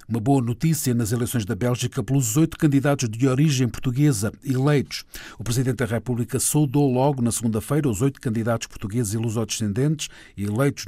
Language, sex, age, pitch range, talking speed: Portuguese, male, 50-69, 115-155 Hz, 160 wpm